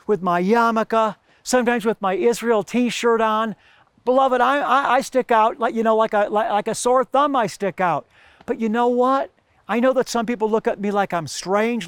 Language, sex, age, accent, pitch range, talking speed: English, male, 50-69, American, 195-245 Hz, 215 wpm